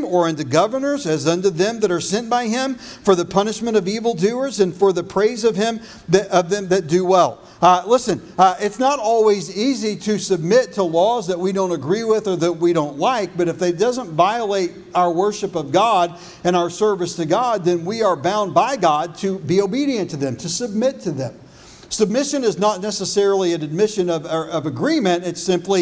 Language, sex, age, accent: English, male, 50-69, American